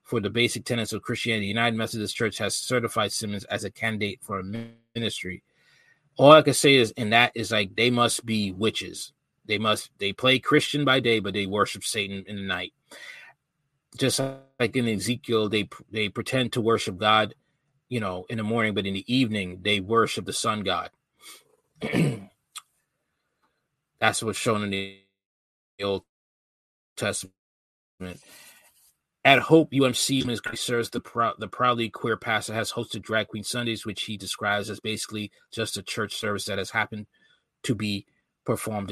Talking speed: 155 wpm